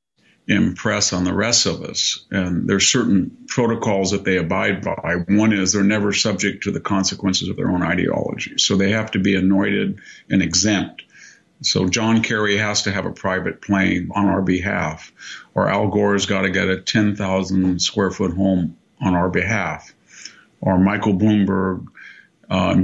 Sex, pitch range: male, 95-105 Hz